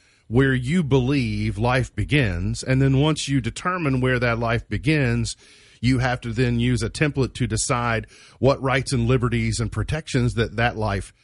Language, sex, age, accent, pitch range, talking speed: English, male, 40-59, American, 105-140 Hz, 170 wpm